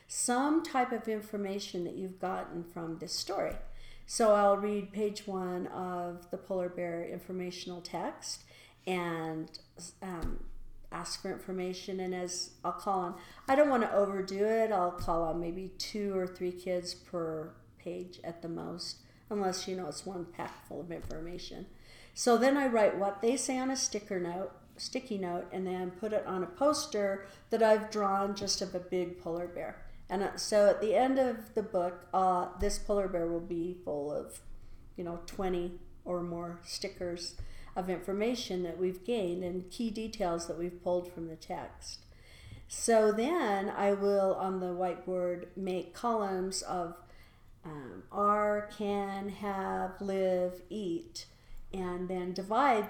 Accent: American